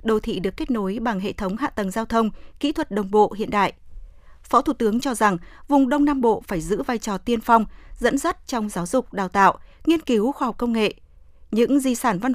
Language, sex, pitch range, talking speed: Vietnamese, female, 205-260 Hz, 245 wpm